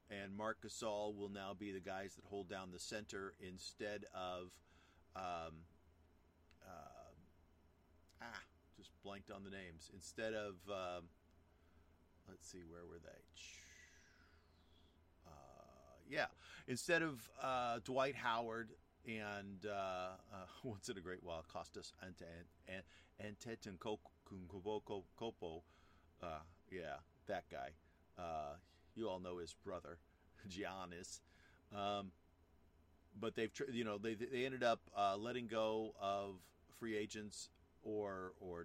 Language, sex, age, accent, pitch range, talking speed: English, male, 40-59, American, 85-105 Hz, 125 wpm